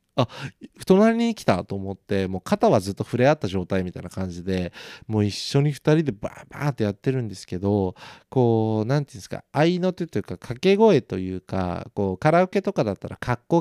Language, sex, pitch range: Japanese, male, 100-165 Hz